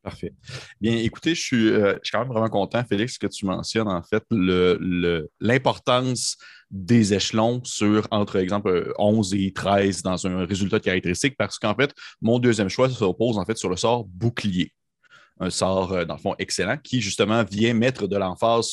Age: 30-49